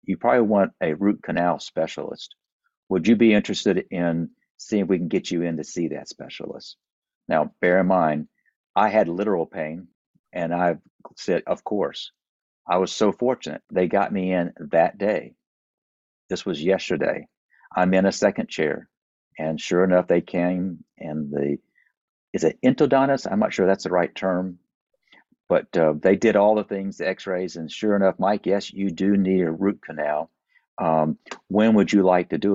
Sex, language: male, English